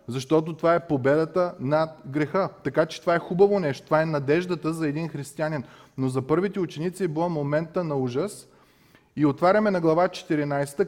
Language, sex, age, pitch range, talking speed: Bulgarian, male, 30-49, 135-180 Hz, 175 wpm